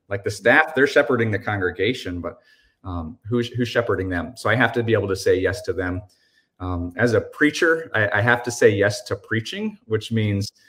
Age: 30-49